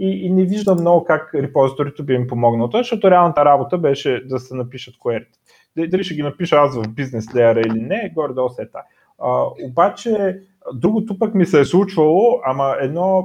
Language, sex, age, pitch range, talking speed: Bulgarian, male, 30-49, 130-175 Hz, 180 wpm